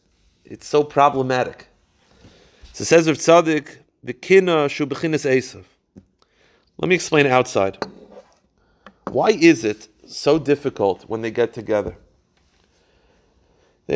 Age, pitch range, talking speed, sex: 40-59, 115-150 Hz, 105 wpm, male